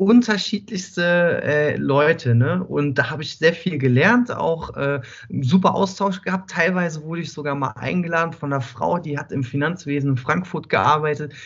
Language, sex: German, male